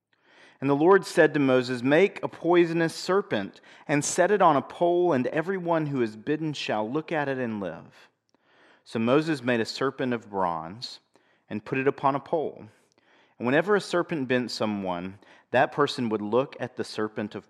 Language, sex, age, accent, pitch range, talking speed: English, male, 40-59, American, 110-155 Hz, 185 wpm